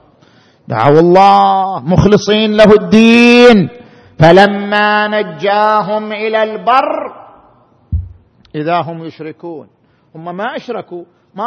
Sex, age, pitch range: male, 50-69, 160-230 Hz